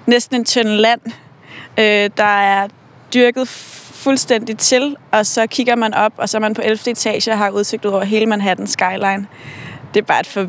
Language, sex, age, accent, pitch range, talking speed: Danish, female, 30-49, native, 200-235 Hz, 190 wpm